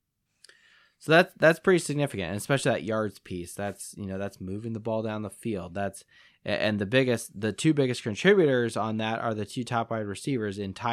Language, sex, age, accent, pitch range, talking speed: English, male, 20-39, American, 100-135 Hz, 210 wpm